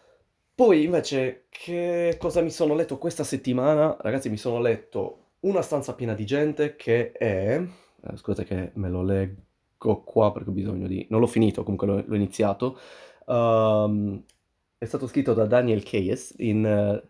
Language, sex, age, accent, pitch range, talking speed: Italian, male, 30-49, native, 100-130 Hz, 155 wpm